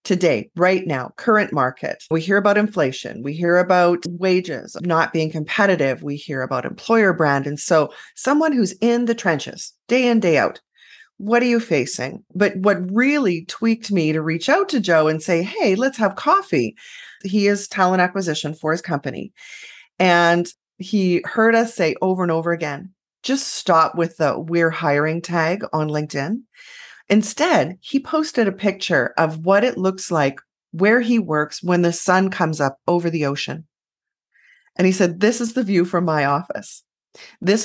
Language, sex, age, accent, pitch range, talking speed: English, female, 30-49, American, 160-220 Hz, 175 wpm